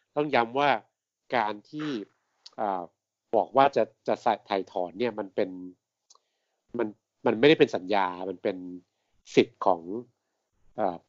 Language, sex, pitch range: Thai, male, 95-130 Hz